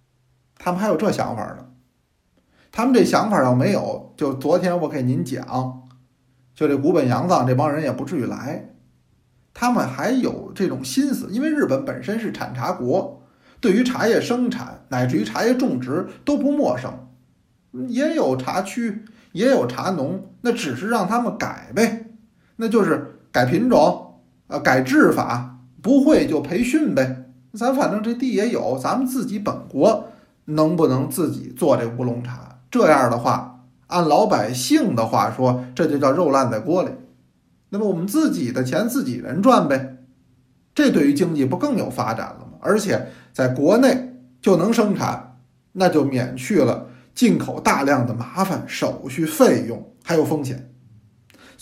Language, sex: Chinese, male